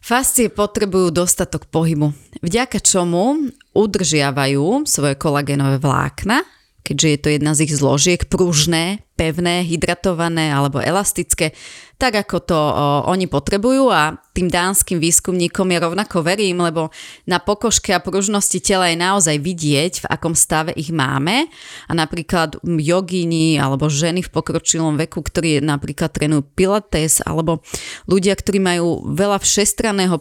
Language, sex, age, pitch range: Slovak, female, 30-49, 155-185 Hz